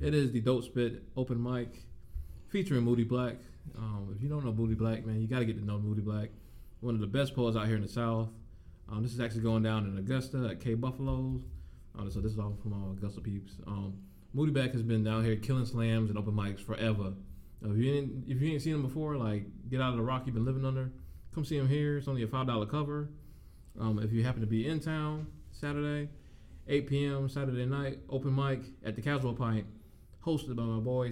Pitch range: 105-130 Hz